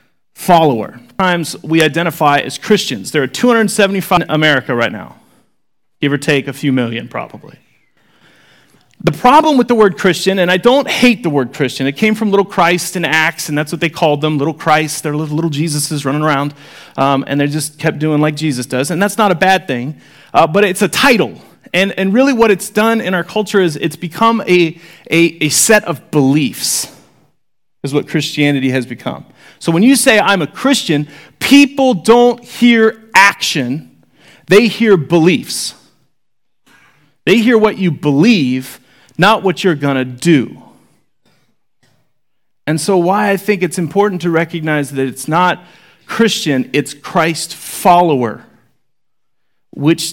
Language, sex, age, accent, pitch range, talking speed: English, male, 30-49, American, 145-200 Hz, 165 wpm